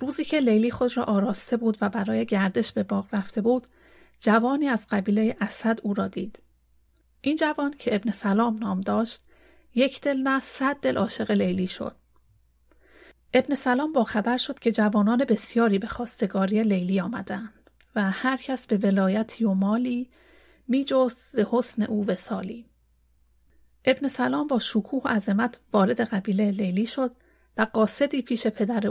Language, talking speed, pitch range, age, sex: Persian, 150 wpm, 200-250 Hz, 30-49, female